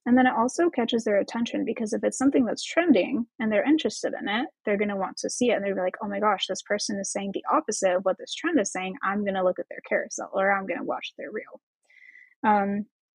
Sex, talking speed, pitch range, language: female, 265 wpm, 200-260 Hz, English